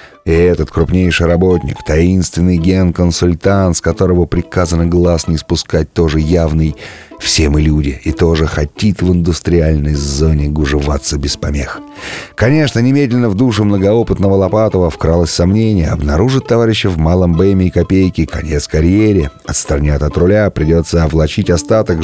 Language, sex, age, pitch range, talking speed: Russian, male, 30-49, 80-95 Hz, 135 wpm